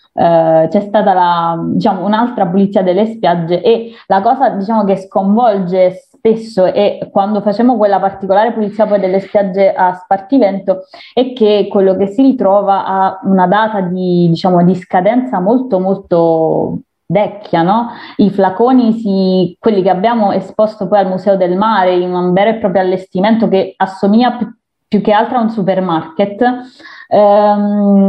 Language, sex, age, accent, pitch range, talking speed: Italian, female, 20-39, native, 185-215 Hz, 150 wpm